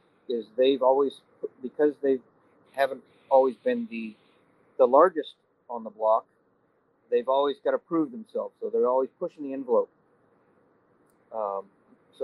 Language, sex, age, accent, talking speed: English, male, 40-59, American, 135 wpm